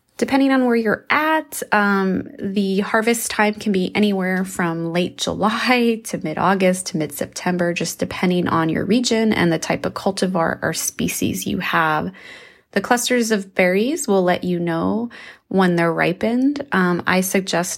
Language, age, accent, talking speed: English, 20-39, American, 160 wpm